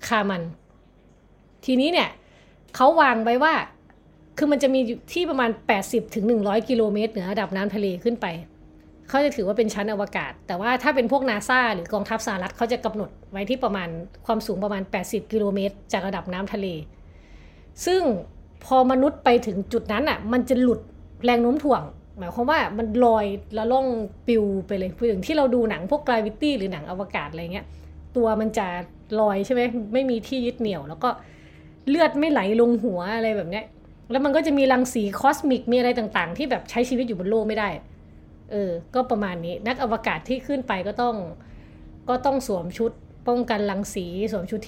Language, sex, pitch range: Thai, female, 195-245 Hz